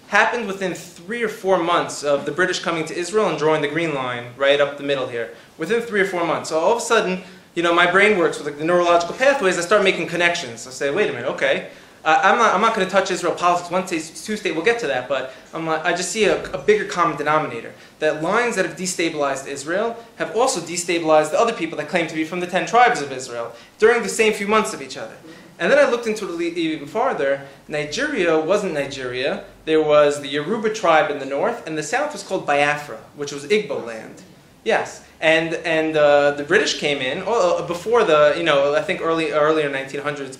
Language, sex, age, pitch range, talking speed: English, male, 20-39, 150-195 Hz, 230 wpm